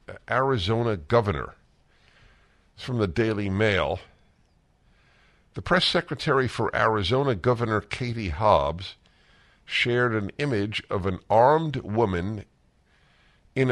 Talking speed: 100 wpm